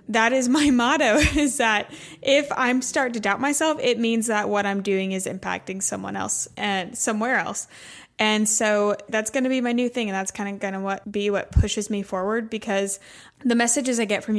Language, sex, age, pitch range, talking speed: English, female, 10-29, 195-235 Hz, 215 wpm